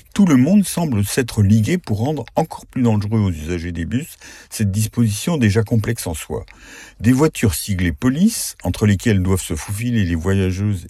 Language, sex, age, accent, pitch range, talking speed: French, male, 50-69, French, 95-120 Hz, 175 wpm